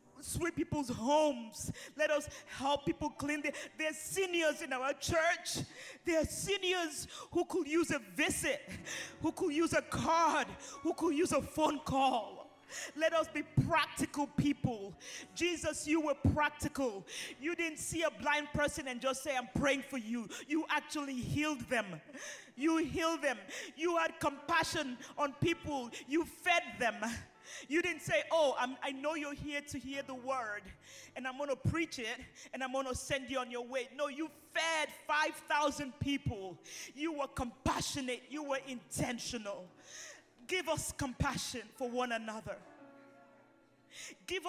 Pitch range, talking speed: 265-315 Hz, 155 wpm